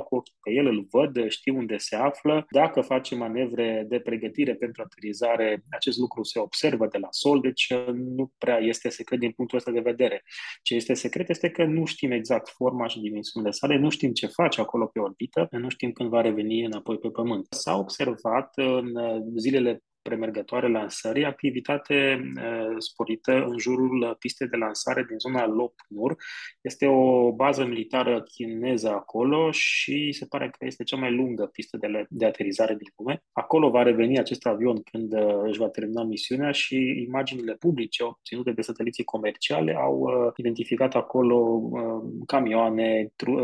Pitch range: 115-130 Hz